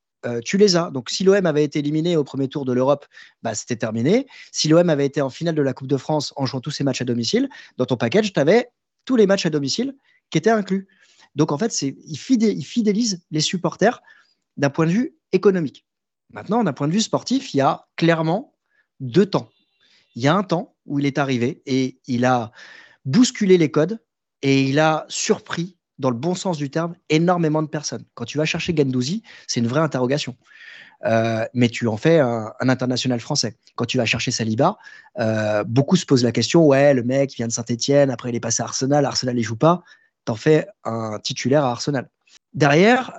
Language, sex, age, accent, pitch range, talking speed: French, male, 30-49, French, 130-185 Hz, 220 wpm